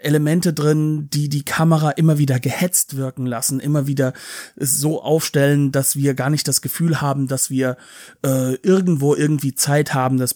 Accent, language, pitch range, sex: German, German, 135-180 Hz, male